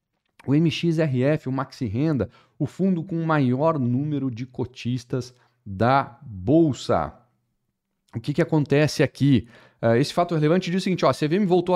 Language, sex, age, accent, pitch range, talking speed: Portuguese, male, 40-59, Brazilian, 120-150 Hz, 150 wpm